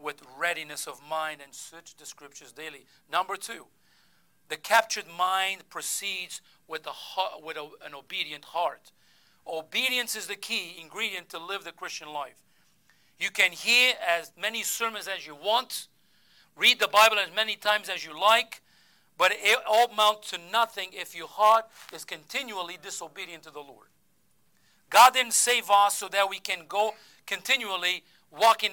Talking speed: 160 wpm